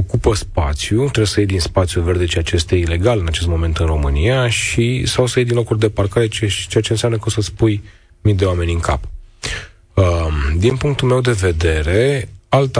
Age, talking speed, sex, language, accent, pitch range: 30-49, 205 wpm, male, Romanian, native, 85-110 Hz